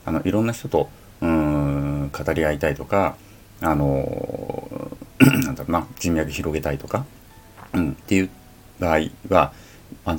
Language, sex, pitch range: Japanese, male, 75-115 Hz